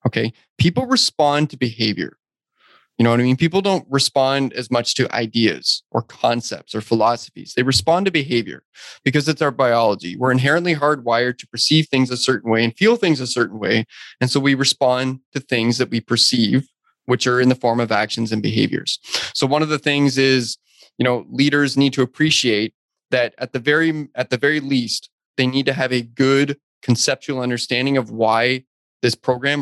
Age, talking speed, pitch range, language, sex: 20-39, 190 wpm, 120-140 Hz, English, male